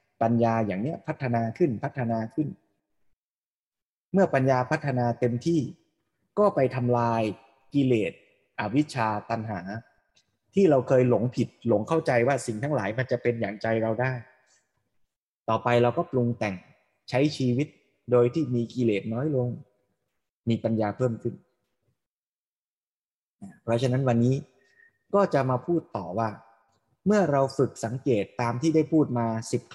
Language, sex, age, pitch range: Thai, male, 20-39, 115-150 Hz